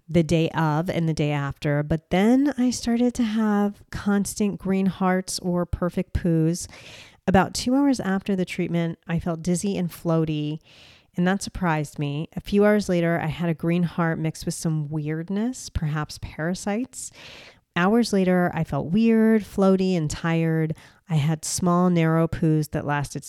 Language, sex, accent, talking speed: English, female, American, 165 wpm